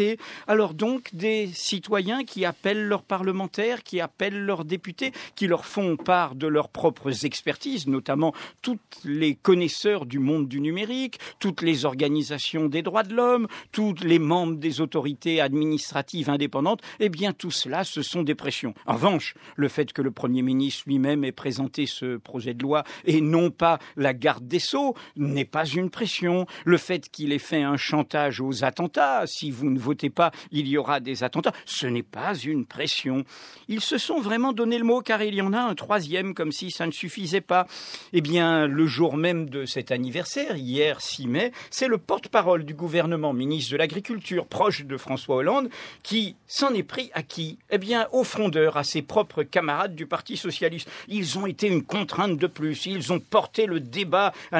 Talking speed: 190 wpm